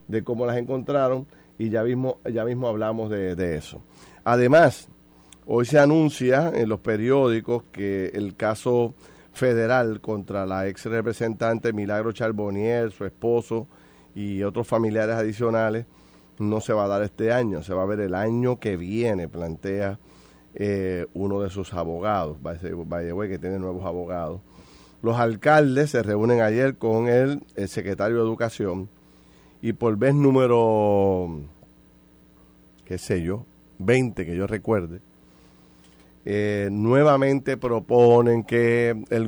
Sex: male